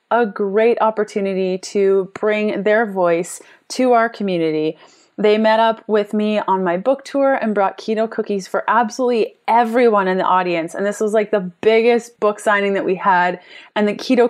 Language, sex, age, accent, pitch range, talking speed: English, female, 30-49, American, 190-235 Hz, 180 wpm